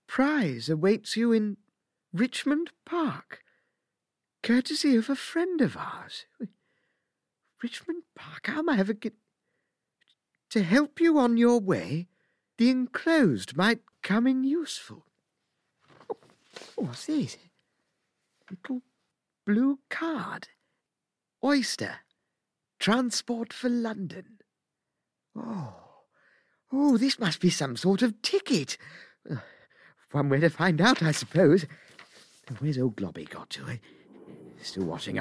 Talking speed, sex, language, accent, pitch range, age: 110 wpm, male, English, British, 155-255 Hz, 50-69